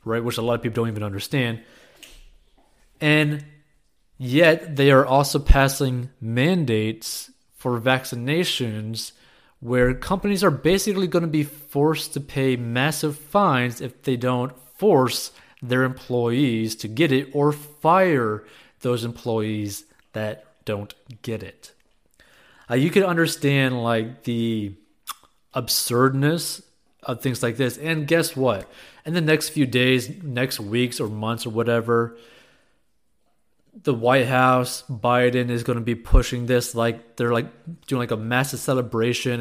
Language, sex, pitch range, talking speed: English, male, 120-150 Hz, 135 wpm